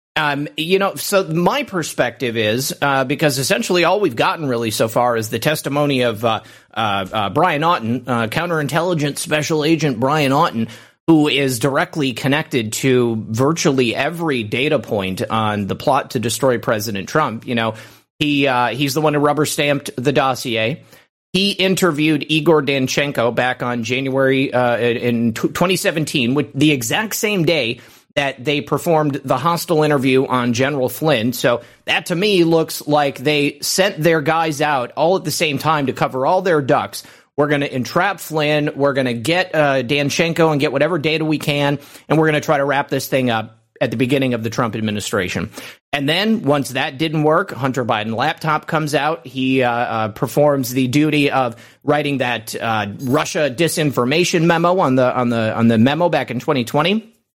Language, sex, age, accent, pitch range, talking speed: English, male, 30-49, American, 125-155 Hz, 180 wpm